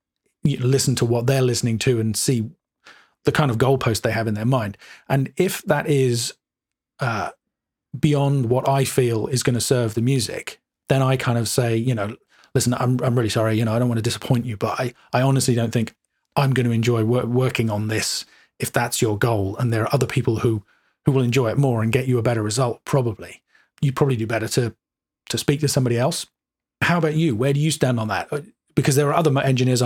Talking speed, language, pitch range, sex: 230 wpm, English, 120-140 Hz, male